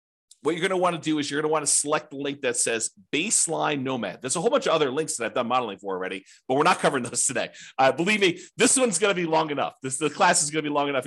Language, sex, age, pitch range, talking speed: English, male, 40-59, 120-160 Hz, 315 wpm